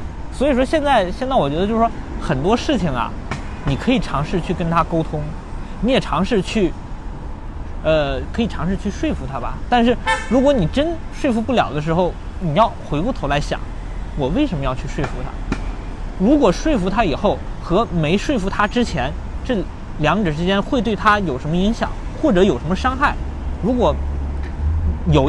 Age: 20-39